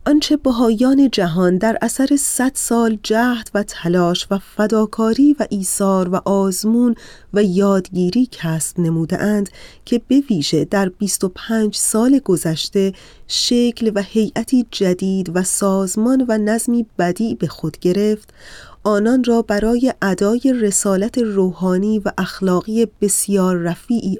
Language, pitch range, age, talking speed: Persian, 185-230 Hz, 30-49, 120 wpm